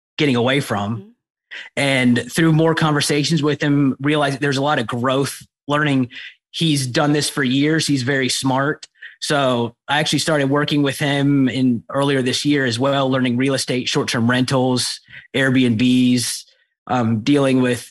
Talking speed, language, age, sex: 155 wpm, English, 20-39, male